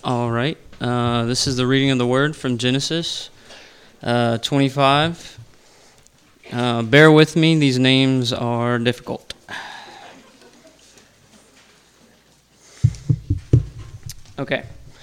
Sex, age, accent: male, 20-39, American